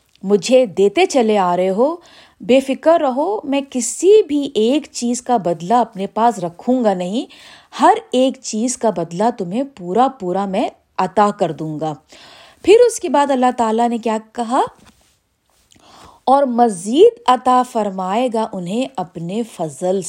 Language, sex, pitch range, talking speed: Urdu, female, 195-275 Hz, 150 wpm